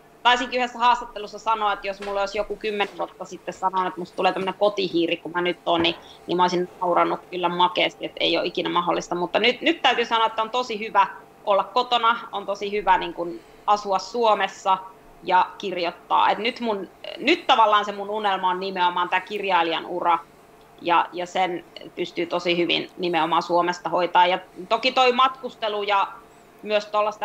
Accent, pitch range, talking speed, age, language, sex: native, 185-215 Hz, 185 wpm, 20-39, Finnish, female